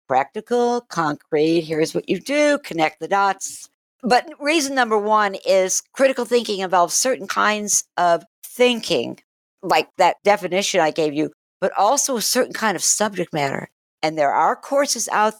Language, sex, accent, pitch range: English, female, American, 175-235 Hz